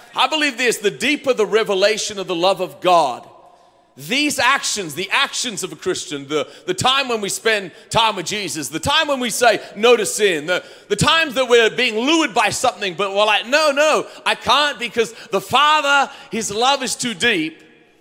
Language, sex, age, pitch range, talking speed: English, male, 40-59, 180-240 Hz, 200 wpm